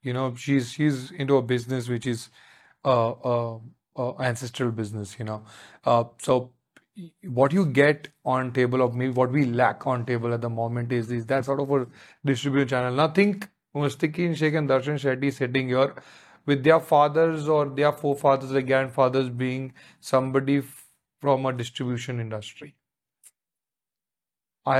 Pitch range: 120-145 Hz